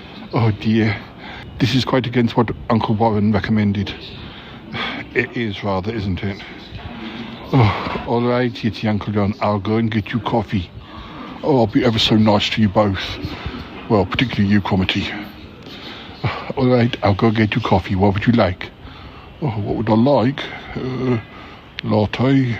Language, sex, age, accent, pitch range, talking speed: English, male, 60-79, British, 100-125 Hz, 155 wpm